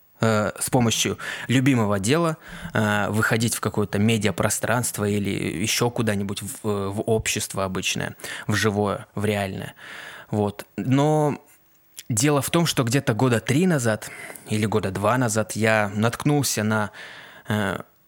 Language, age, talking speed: Russian, 20-39, 125 wpm